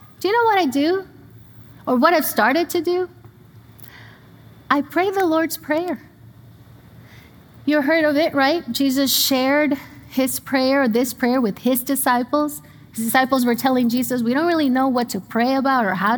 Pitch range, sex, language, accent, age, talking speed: 220-295 Hz, female, English, American, 30-49, 170 wpm